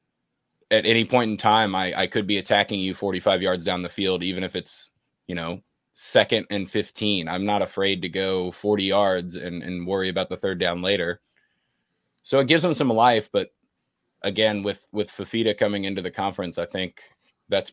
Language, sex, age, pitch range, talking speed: English, male, 20-39, 90-105 Hz, 195 wpm